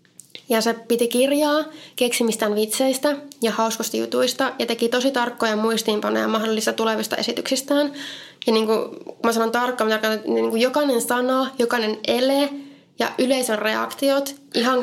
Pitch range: 215-250 Hz